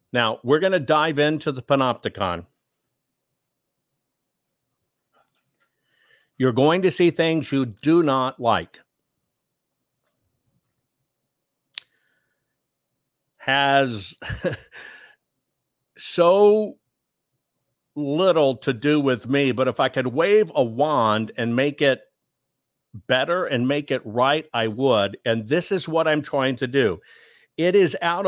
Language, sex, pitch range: English, male, 125-155 Hz